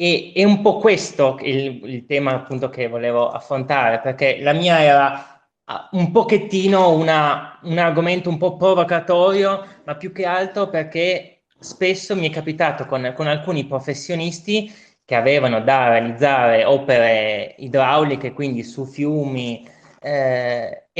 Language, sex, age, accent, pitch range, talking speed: Italian, male, 20-39, native, 135-180 Hz, 135 wpm